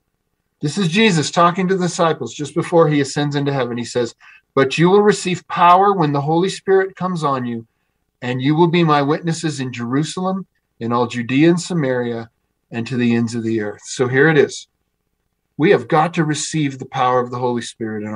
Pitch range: 145-200 Hz